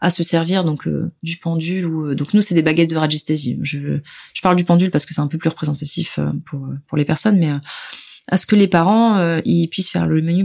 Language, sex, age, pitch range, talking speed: French, female, 30-49, 155-190 Hz, 265 wpm